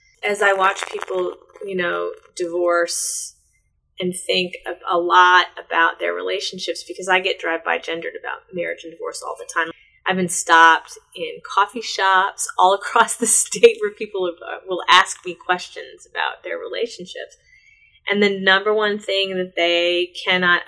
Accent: American